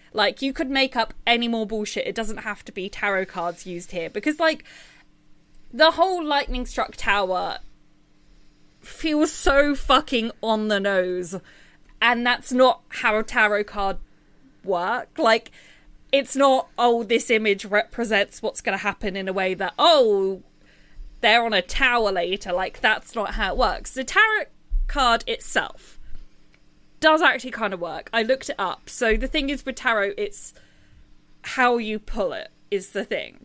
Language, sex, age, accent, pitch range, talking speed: English, female, 20-39, British, 195-265 Hz, 165 wpm